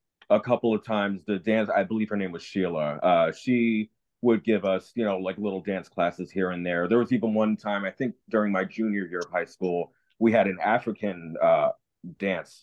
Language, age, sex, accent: English, 30-49, male, American